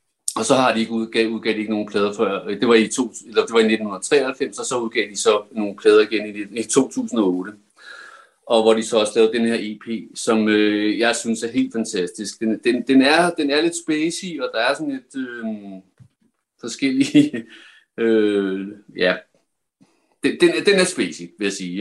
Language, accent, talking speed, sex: Danish, native, 205 wpm, male